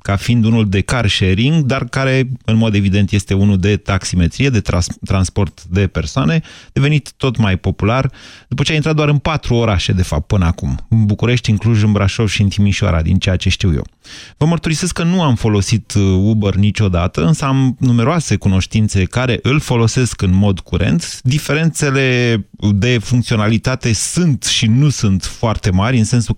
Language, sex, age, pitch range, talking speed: Romanian, male, 30-49, 100-130 Hz, 180 wpm